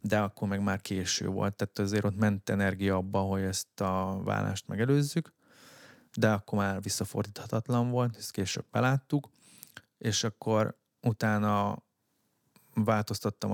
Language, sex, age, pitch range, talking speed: Hungarian, male, 20-39, 100-110 Hz, 130 wpm